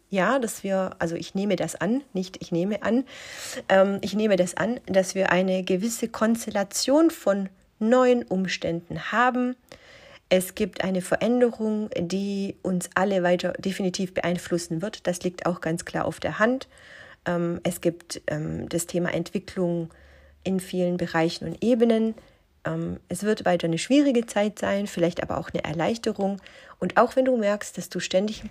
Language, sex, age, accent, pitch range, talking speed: German, female, 40-59, German, 175-220 Hz, 165 wpm